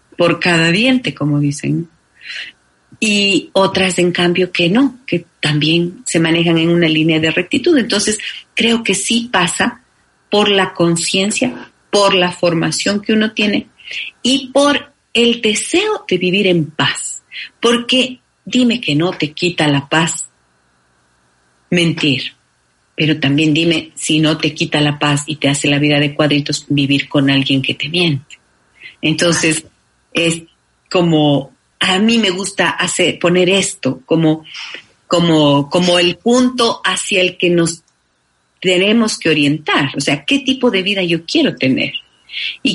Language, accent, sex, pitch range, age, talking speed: Spanish, Mexican, female, 150-210 Hz, 40-59, 145 wpm